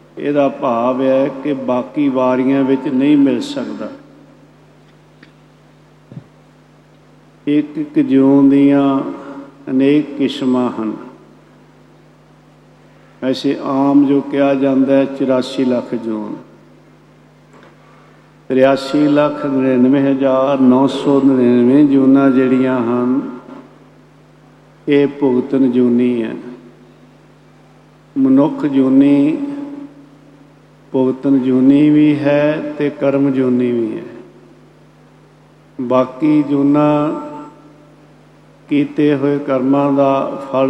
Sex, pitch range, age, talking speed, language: male, 130-145 Hz, 50-69, 80 wpm, Punjabi